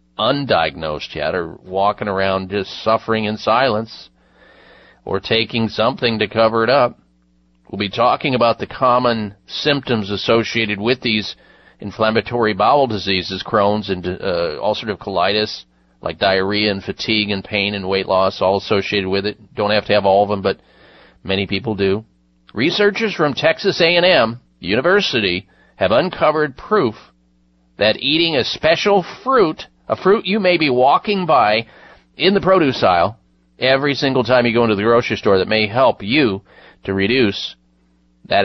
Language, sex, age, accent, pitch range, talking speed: English, male, 40-59, American, 95-160 Hz, 155 wpm